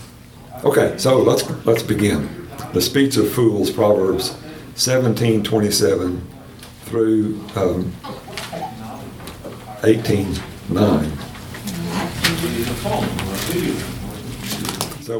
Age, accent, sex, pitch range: 60-79, American, male, 100-120 Hz